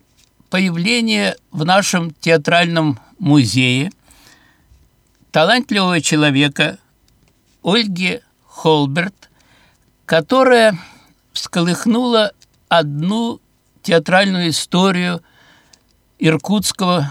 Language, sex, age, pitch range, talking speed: Russian, male, 60-79, 150-200 Hz, 55 wpm